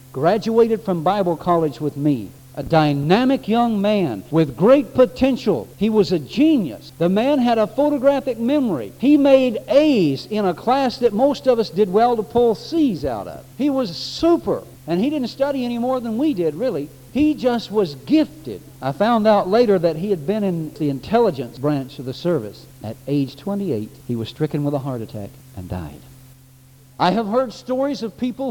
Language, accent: English, American